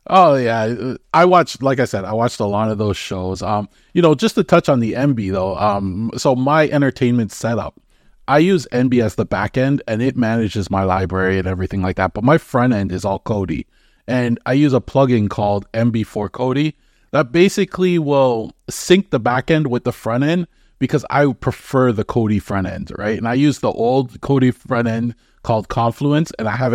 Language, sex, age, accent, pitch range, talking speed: English, male, 30-49, American, 105-135 Hz, 210 wpm